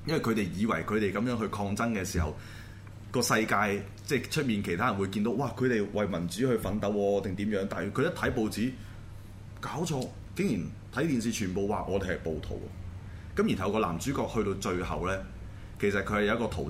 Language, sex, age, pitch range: Chinese, male, 20-39, 90-105 Hz